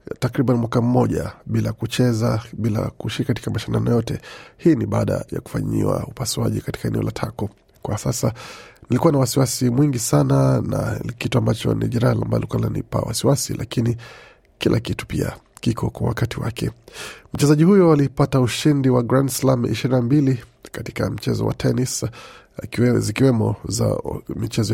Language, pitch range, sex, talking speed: Swahili, 110-130 Hz, male, 145 wpm